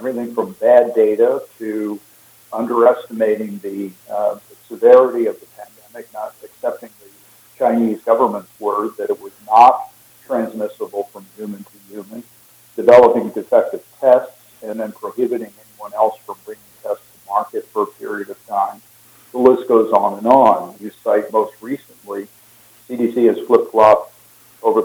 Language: English